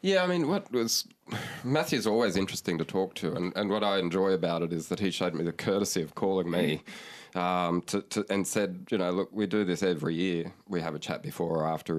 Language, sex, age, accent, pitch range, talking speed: English, male, 20-39, Australian, 85-95 Hz, 240 wpm